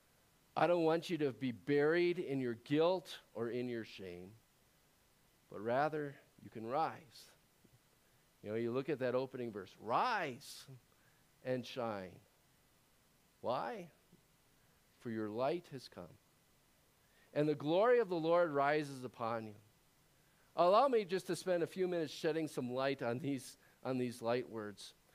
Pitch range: 115-160 Hz